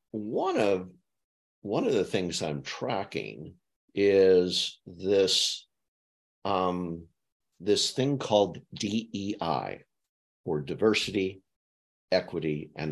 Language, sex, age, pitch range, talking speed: English, male, 50-69, 75-100 Hz, 90 wpm